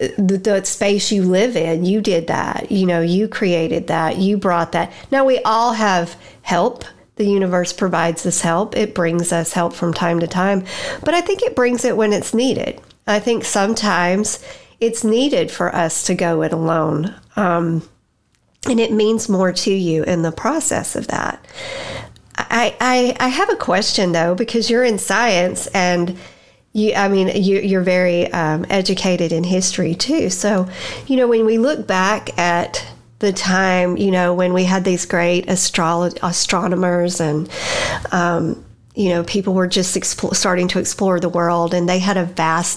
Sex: female